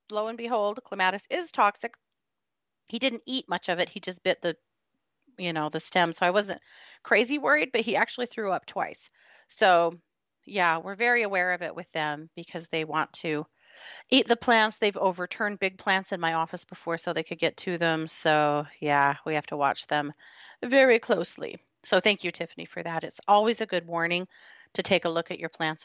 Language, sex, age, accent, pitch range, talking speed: English, female, 30-49, American, 160-215 Hz, 205 wpm